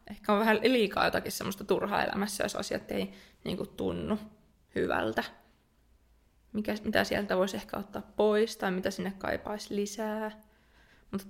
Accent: native